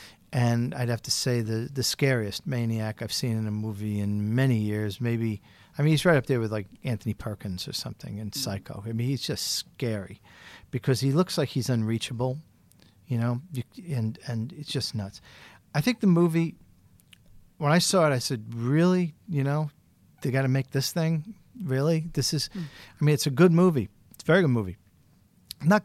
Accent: American